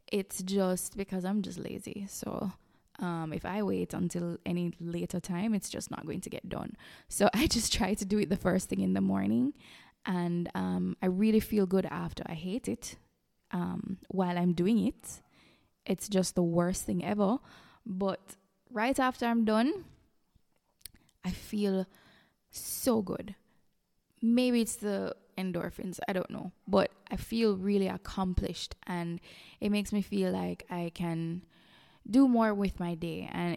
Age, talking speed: 20-39, 165 wpm